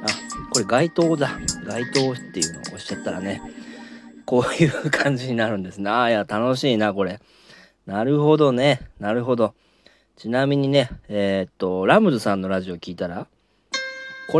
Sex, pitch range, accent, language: male, 95-155 Hz, native, Japanese